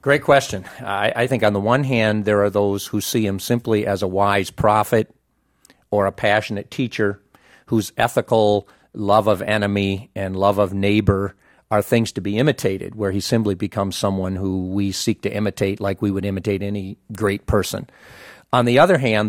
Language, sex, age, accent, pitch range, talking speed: English, male, 50-69, American, 100-115 Hz, 185 wpm